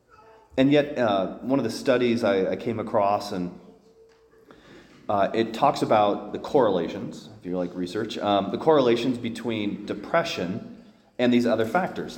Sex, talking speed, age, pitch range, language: male, 155 wpm, 30-49, 110-150 Hz, English